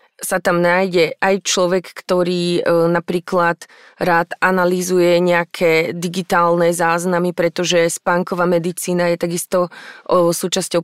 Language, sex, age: Slovak, female, 20-39